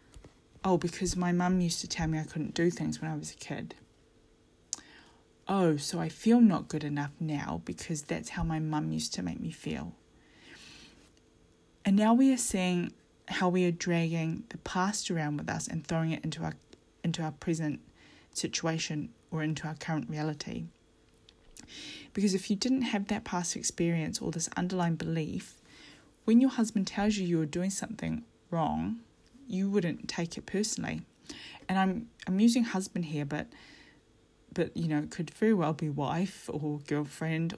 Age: 20-39